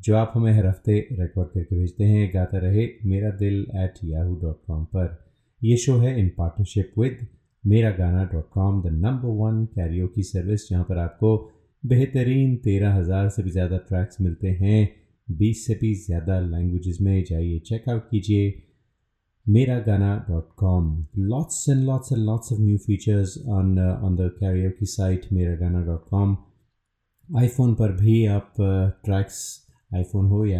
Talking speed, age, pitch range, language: 155 wpm, 30-49, 95-110 Hz, Hindi